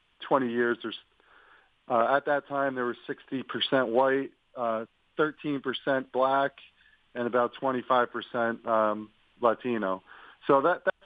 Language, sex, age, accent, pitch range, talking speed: English, male, 40-59, American, 115-140 Hz, 135 wpm